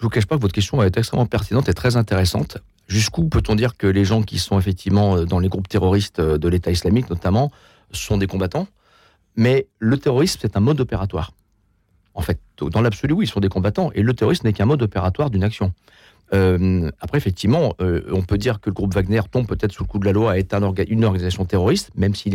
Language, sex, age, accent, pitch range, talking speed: French, male, 40-59, French, 90-110 Hz, 230 wpm